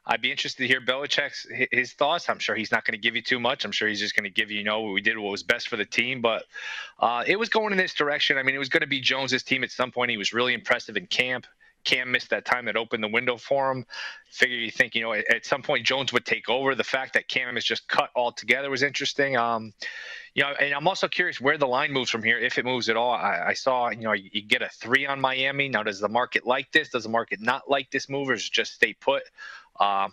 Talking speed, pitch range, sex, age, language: 285 wpm, 115-140 Hz, male, 20-39, English